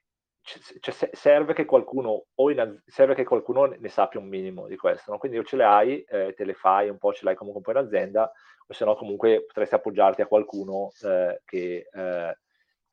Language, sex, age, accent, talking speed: Italian, male, 40-59, native, 210 wpm